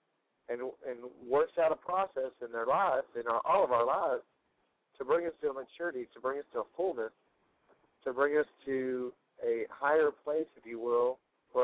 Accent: American